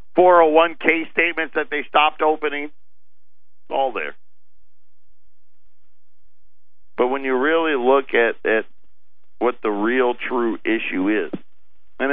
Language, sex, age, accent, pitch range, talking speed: English, male, 50-69, American, 100-150 Hz, 115 wpm